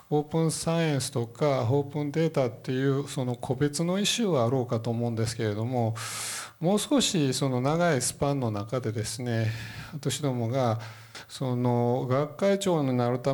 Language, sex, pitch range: Japanese, male, 120-165 Hz